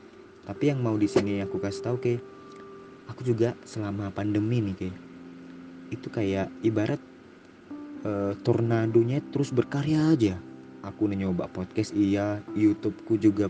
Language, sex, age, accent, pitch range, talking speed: Indonesian, male, 20-39, native, 95-120 Hz, 130 wpm